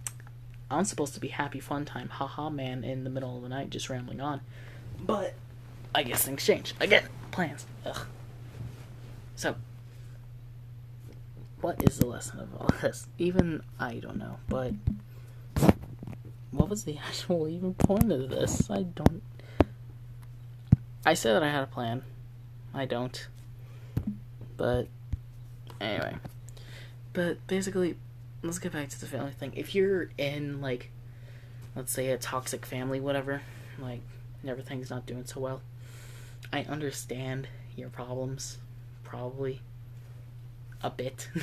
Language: English